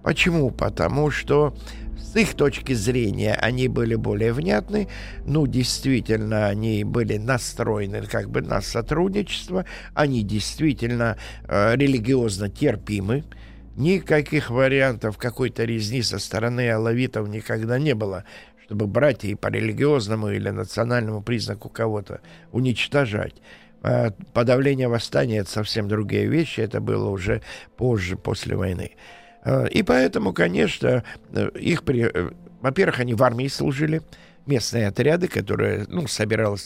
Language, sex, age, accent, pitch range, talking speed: Russian, male, 50-69, native, 105-140 Hz, 120 wpm